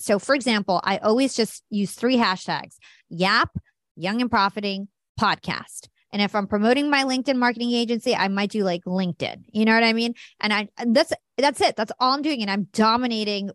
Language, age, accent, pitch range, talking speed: English, 20-39, American, 190-235 Hz, 200 wpm